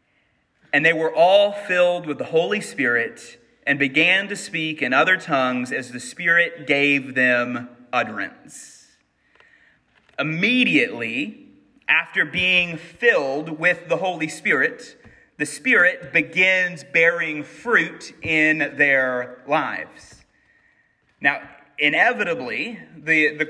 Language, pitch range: English, 150-195 Hz